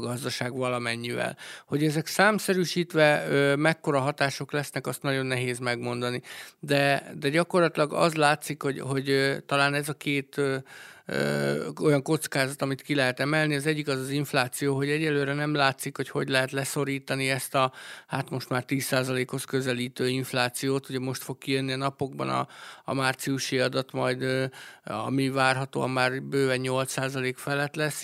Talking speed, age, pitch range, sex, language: 145 wpm, 50-69, 130-150 Hz, male, Hungarian